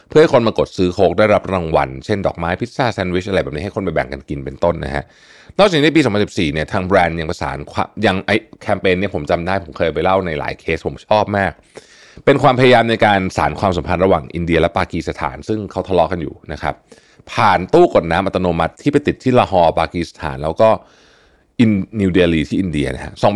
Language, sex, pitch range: Thai, male, 80-120 Hz